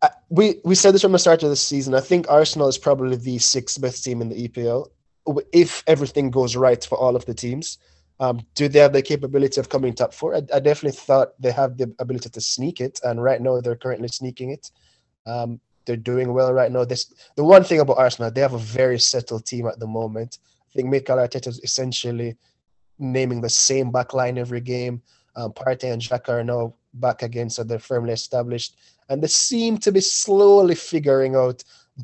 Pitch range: 120-140 Hz